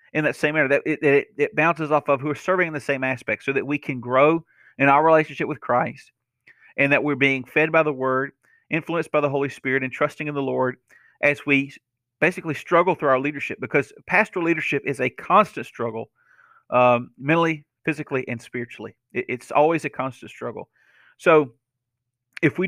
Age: 40-59